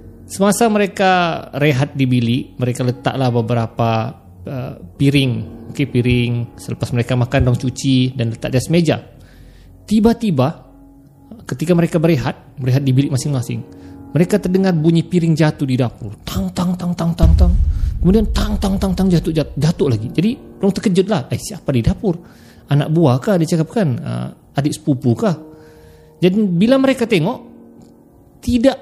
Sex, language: male, Malay